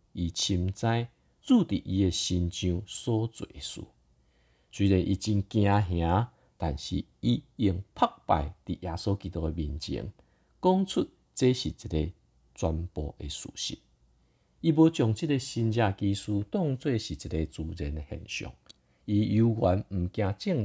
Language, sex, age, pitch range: Chinese, male, 50-69, 85-130 Hz